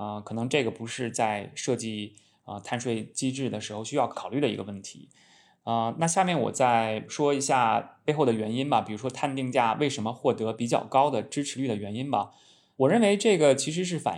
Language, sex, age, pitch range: Chinese, male, 20-39, 110-140 Hz